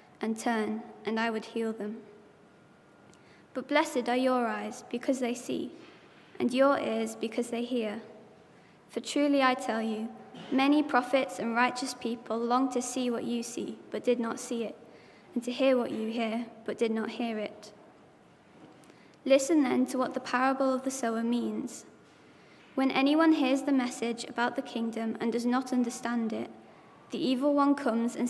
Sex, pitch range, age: female, 230-265 Hz, 20-39